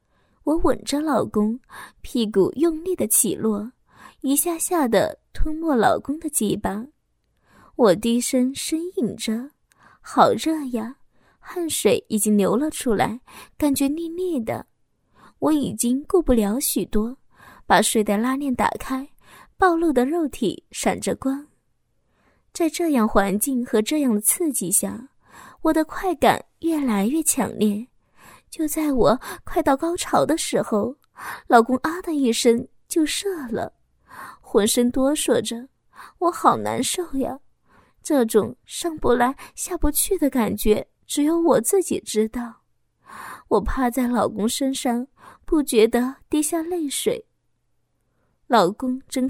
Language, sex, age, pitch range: Chinese, female, 20-39, 230-315 Hz